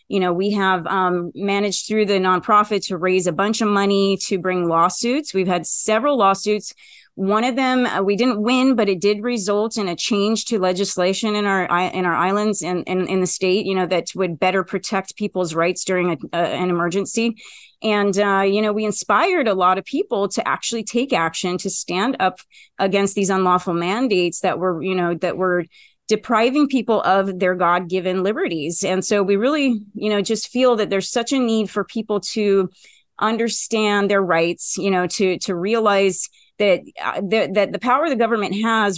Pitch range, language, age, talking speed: 185-220 Hz, English, 30-49, 190 wpm